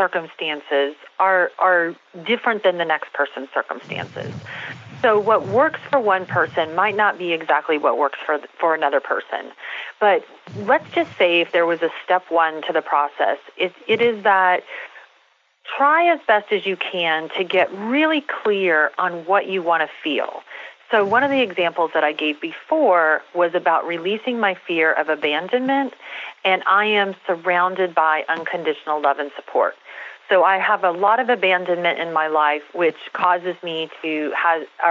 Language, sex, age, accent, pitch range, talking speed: English, female, 40-59, American, 160-220 Hz, 170 wpm